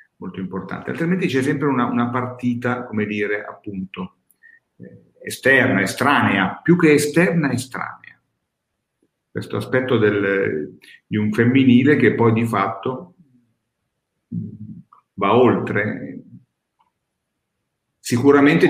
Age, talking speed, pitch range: 50-69, 105 wpm, 100-130 Hz